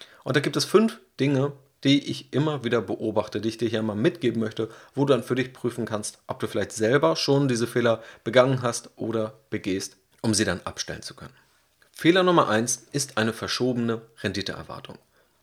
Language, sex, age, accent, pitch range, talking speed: German, male, 30-49, German, 110-135 Hz, 190 wpm